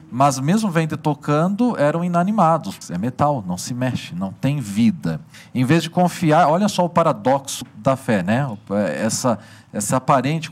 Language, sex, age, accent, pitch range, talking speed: Portuguese, male, 40-59, Brazilian, 115-160 Hz, 165 wpm